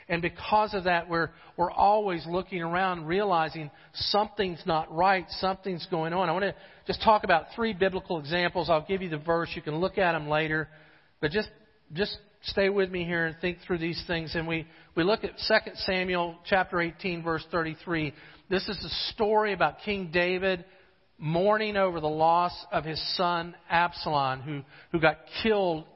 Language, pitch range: English, 165-200 Hz